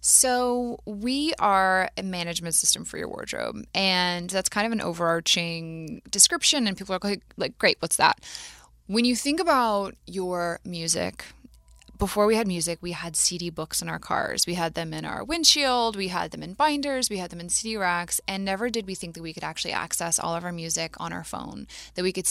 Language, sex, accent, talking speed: English, female, American, 205 wpm